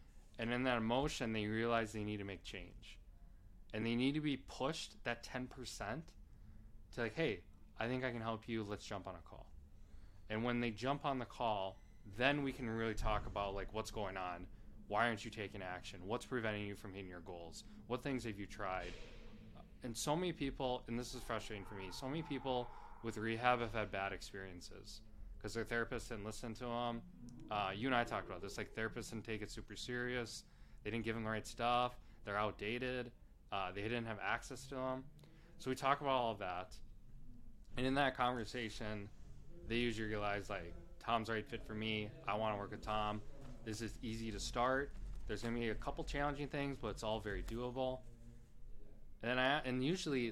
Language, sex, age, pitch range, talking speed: English, male, 20-39, 105-125 Hz, 205 wpm